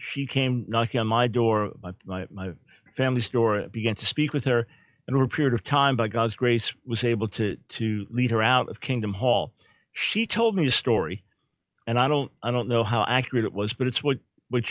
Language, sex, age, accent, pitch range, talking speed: English, male, 50-69, American, 110-130 Hz, 220 wpm